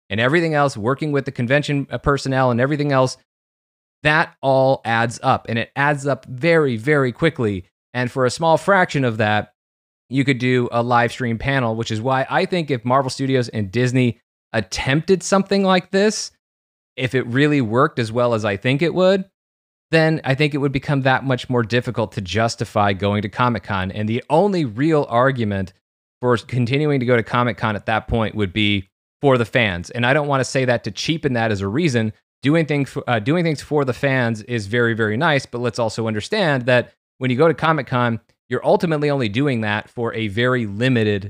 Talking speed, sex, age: 205 wpm, male, 30-49